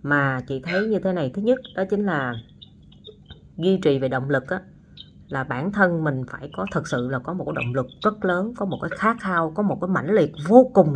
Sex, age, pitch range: female, 20-39, 145-205 Hz